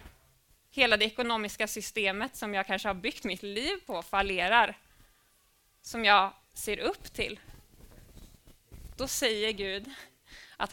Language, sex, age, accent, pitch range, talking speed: Swedish, female, 20-39, native, 200-245 Hz, 125 wpm